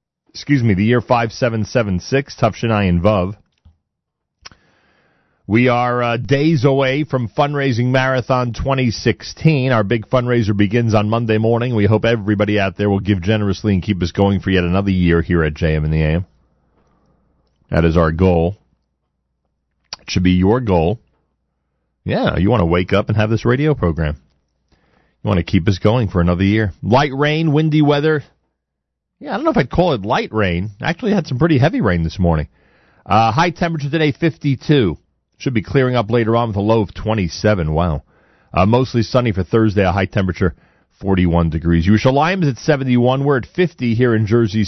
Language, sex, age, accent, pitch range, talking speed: English, male, 40-59, American, 85-120 Hz, 185 wpm